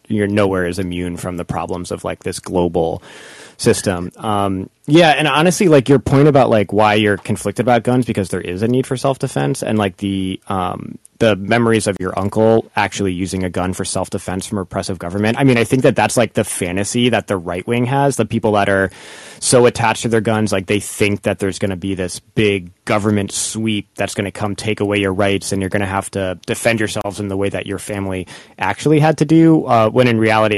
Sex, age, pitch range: male, 20-39, 95-120 Hz